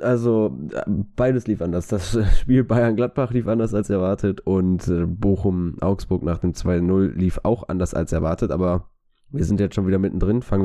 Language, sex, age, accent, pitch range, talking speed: German, male, 20-39, German, 90-105 Hz, 165 wpm